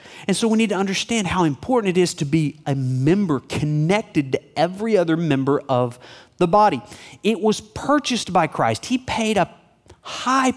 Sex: male